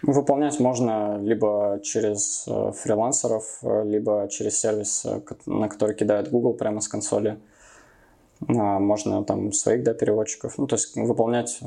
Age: 20-39